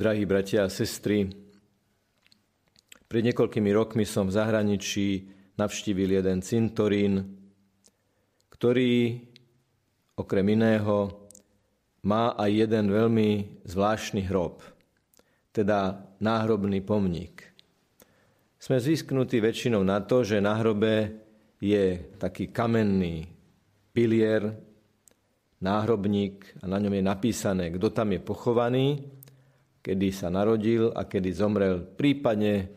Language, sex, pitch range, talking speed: Slovak, male, 100-115 Hz, 100 wpm